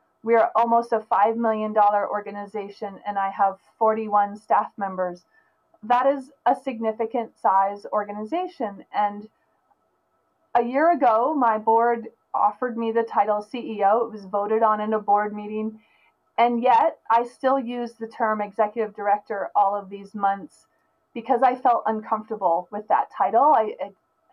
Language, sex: English, female